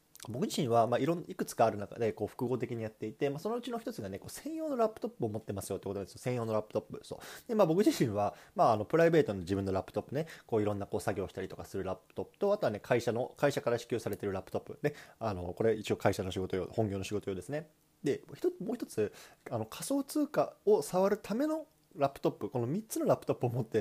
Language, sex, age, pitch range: Japanese, male, 20-39, 105-155 Hz